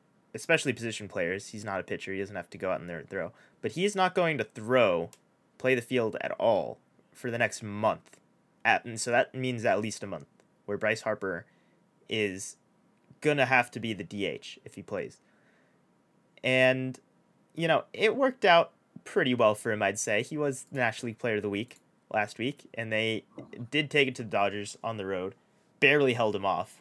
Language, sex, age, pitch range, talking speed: English, male, 30-49, 105-145 Hz, 210 wpm